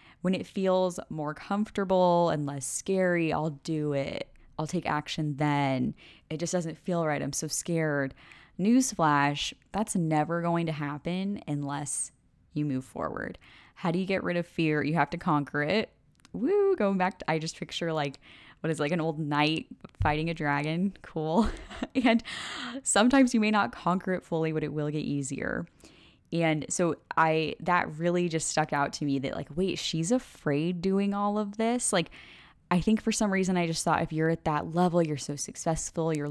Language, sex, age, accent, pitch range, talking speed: English, female, 10-29, American, 150-185 Hz, 185 wpm